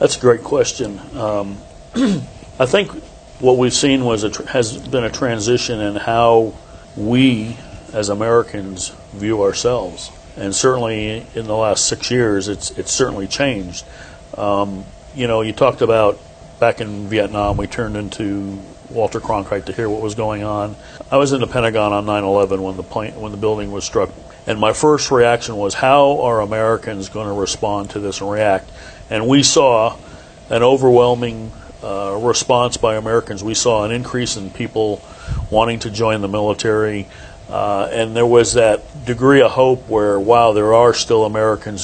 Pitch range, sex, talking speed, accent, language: 100-120 Hz, male, 170 wpm, American, English